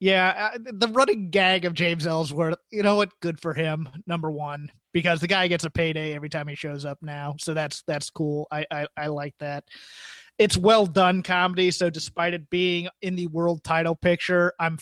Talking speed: 205 wpm